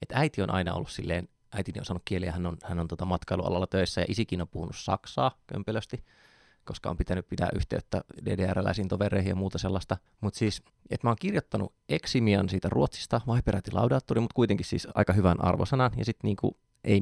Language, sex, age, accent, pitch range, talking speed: Finnish, male, 20-39, native, 90-110 Hz, 190 wpm